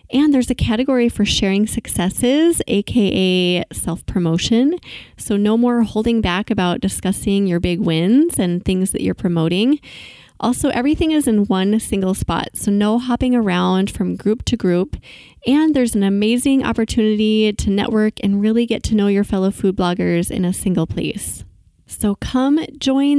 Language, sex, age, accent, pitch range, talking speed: English, female, 20-39, American, 190-235 Hz, 160 wpm